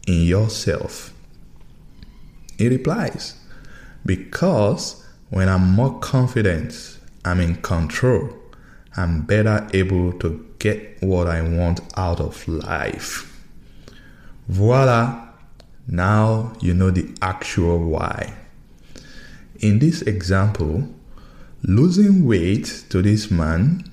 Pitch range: 90-115 Hz